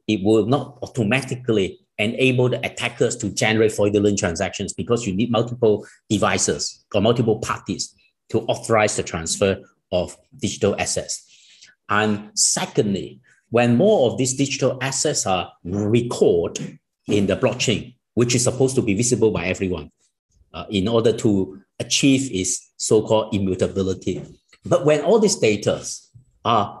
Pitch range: 100-135 Hz